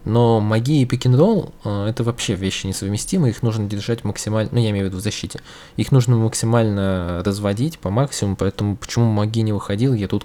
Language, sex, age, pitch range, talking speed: Russian, male, 20-39, 95-120 Hz, 195 wpm